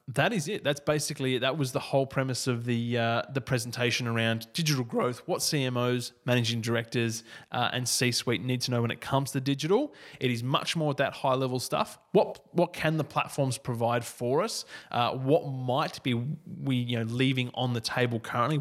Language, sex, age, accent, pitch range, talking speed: English, male, 20-39, Australian, 120-145 Hz, 205 wpm